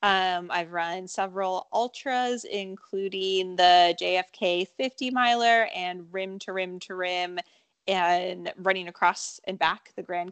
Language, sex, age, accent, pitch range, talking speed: English, female, 20-39, American, 180-225 Hz, 135 wpm